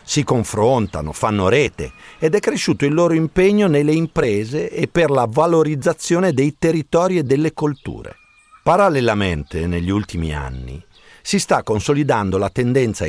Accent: native